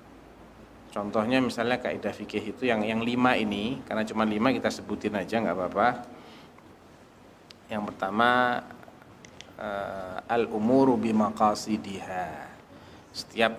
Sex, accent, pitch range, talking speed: male, native, 110-140 Hz, 105 wpm